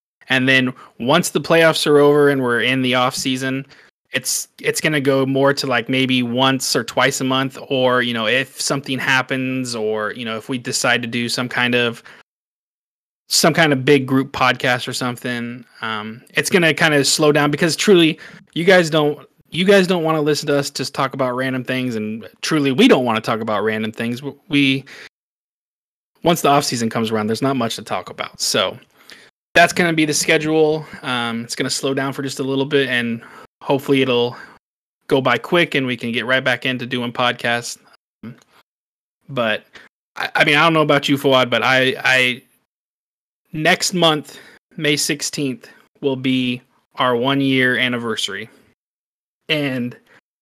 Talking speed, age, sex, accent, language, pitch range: 190 wpm, 20-39, male, American, English, 125-150 Hz